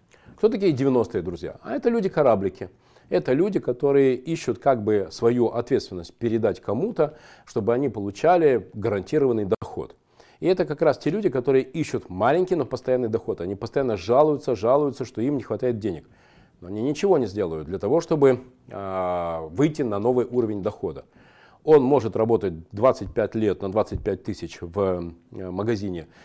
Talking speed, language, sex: 150 wpm, Russian, male